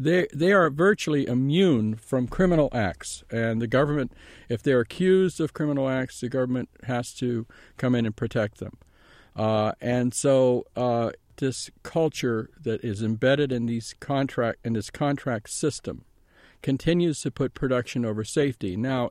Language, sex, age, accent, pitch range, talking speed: English, male, 50-69, American, 115-145 Hz, 155 wpm